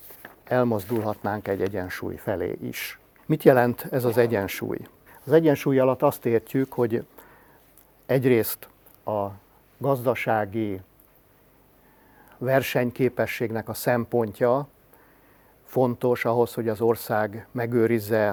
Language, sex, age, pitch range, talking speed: Hungarian, male, 50-69, 105-125 Hz, 90 wpm